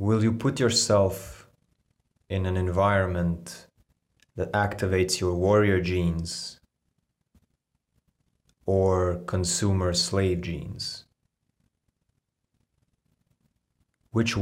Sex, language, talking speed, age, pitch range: male, English, 70 wpm, 30-49, 90-105 Hz